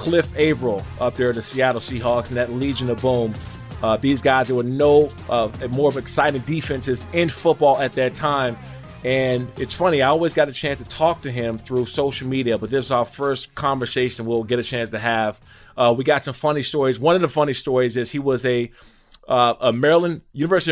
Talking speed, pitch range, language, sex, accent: 215 wpm, 120-140 Hz, English, male, American